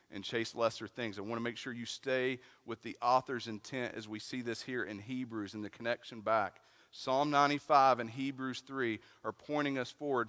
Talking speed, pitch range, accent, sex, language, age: 205 wpm, 115-185 Hz, American, male, English, 40-59